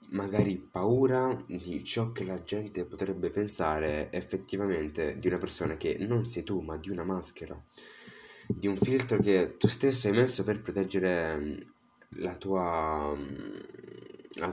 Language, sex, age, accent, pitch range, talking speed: Italian, male, 20-39, native, 90-120 Hz, 140 wpm